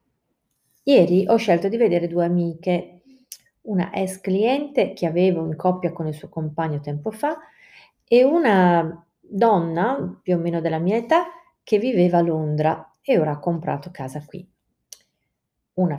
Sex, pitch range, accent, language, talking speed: female, 155-200 Hz, native, Italian, 150 wpm